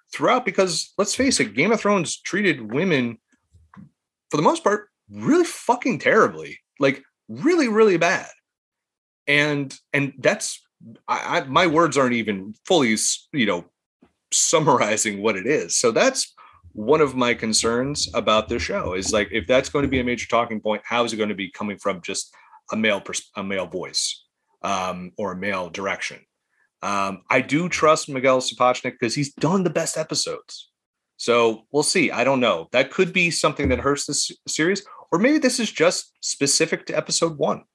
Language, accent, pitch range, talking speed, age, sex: English, American, 110-170 Hz, 175 wpm, 30-49, male